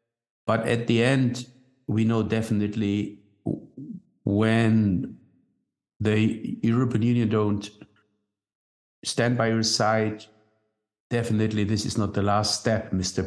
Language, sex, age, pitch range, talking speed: German, male, 60-79, 105-120 Hz, 110 wpm